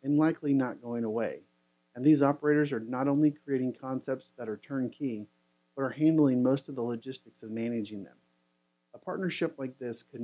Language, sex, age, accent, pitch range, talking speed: English, male, 40-59, American, 100-140 Hz, 180 wpm